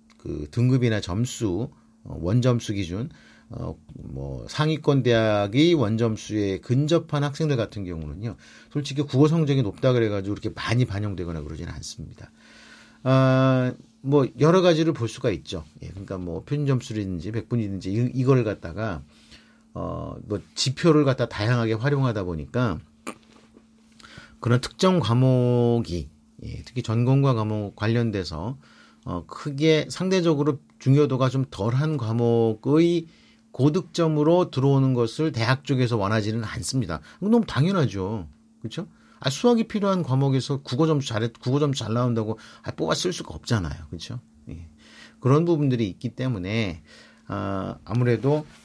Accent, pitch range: Korean, 105-140 Hz